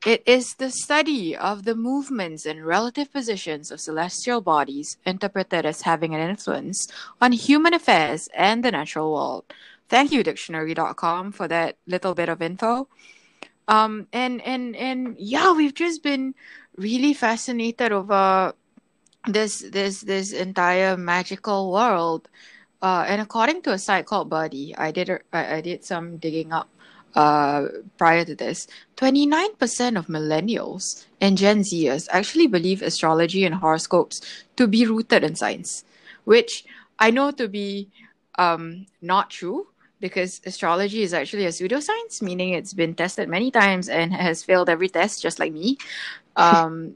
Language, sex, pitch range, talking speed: English, female, 170-245 Hz, 150 wpm